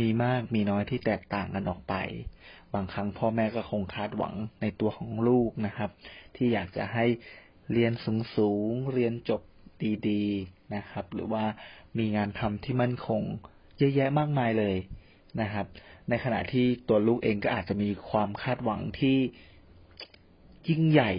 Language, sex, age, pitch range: Thai, male, 30-49, 100-125 Hz